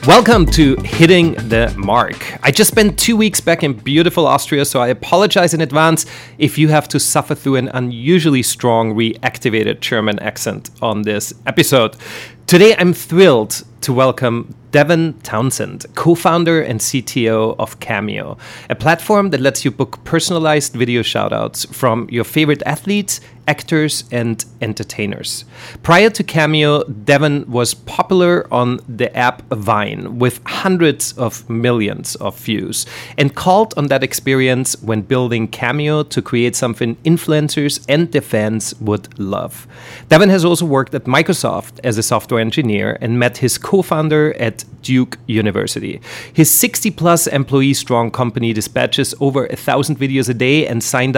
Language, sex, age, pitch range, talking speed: English, male, 30-49, 120-155 Hz, 150 wpm